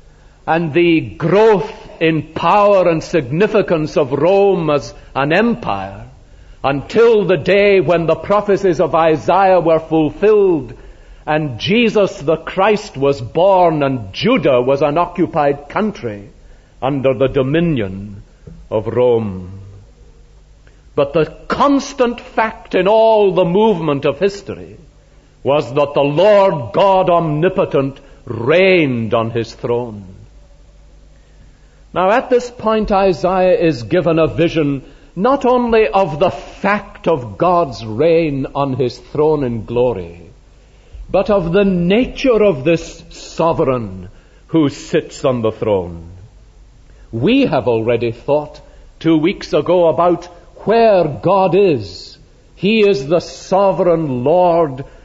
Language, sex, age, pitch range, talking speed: English, male, 60-79, 130-190 Hz, 120 wpm